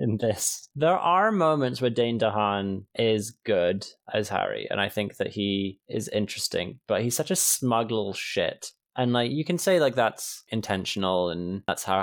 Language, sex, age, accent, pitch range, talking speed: English, male, 20-39, British, 100-120 Hz, 185 wpm